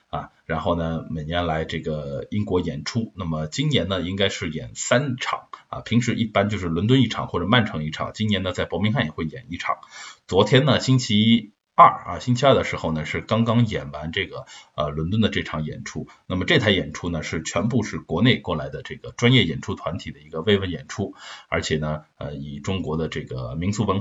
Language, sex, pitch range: Chinese, male, 80-120 Hz